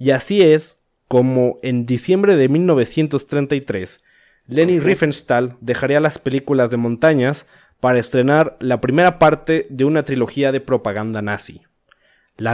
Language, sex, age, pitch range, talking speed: Spanish, male, 30-49, 125-160 Hz, 130 wpm